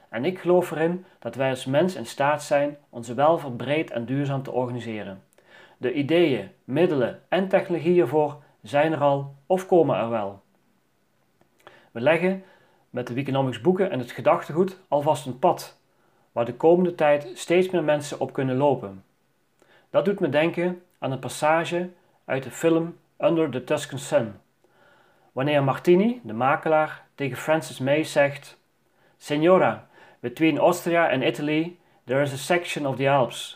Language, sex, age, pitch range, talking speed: Dutch, male, 40-59, 135-170 Hz, 155 wpm